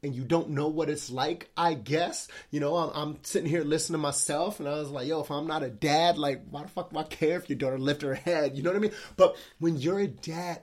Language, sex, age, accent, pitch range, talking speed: English, male, 30-49, American, 150-210 Hz, 290 wpm